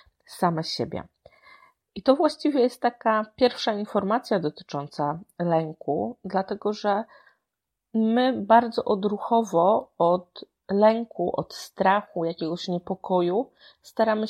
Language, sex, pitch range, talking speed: Polish, female, 185-230 Hz, 95 wpm